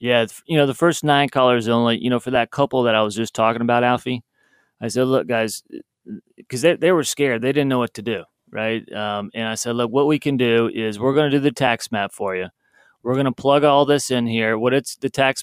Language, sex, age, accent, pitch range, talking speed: English, male, 30-49, American, 120-145 Hz, 260 wpm